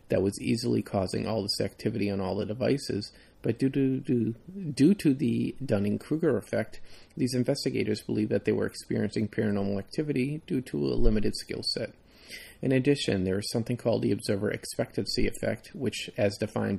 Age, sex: 30-49, male